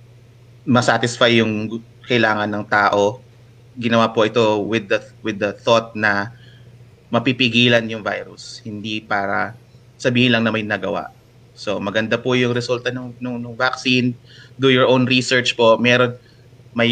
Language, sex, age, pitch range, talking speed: English, male, 20-39, 110-125 Hz, 140 wpm